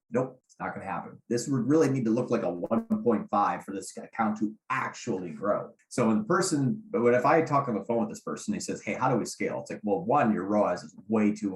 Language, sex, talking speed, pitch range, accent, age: English, male, 255 wpm, 105-135 Hz, American, 30-49